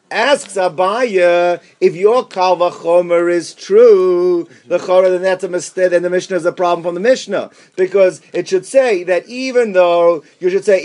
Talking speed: 175 wpm